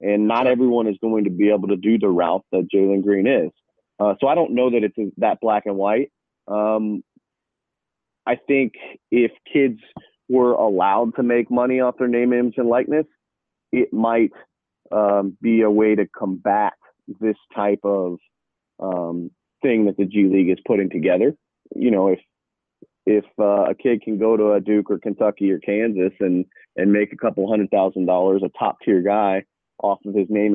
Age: 30-49